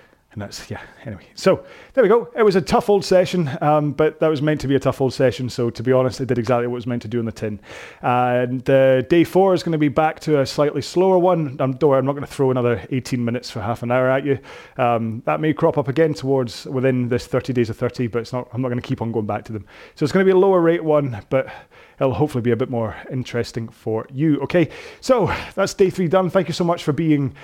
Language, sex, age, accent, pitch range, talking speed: English, male, 30-49, British, 125-160 Hz, 285 wpm